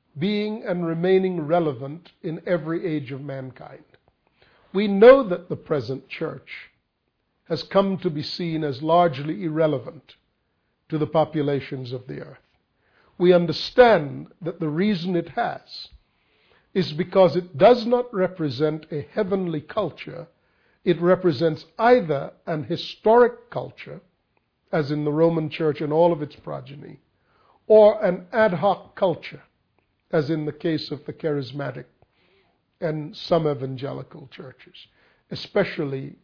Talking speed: 130 wpm